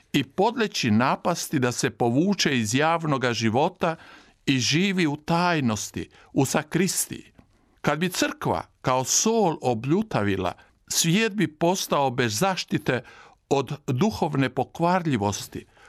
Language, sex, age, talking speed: Croatian, male, 60-79, 110 wpm